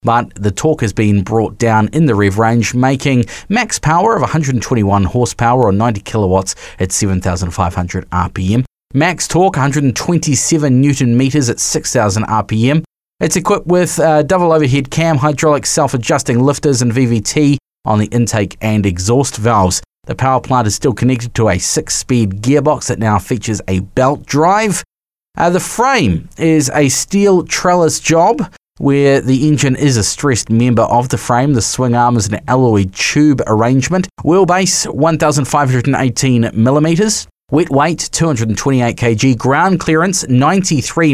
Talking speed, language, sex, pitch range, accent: 145 wpm, English, male, 110-150 Hz, Australian